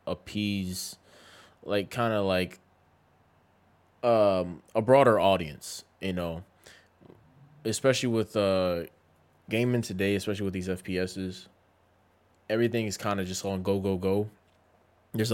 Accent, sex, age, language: American, male, 20-39, English